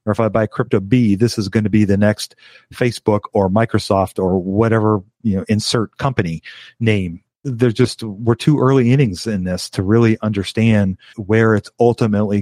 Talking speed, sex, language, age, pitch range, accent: 180 wpm, male, English, 40-59, 100-120 Hz, American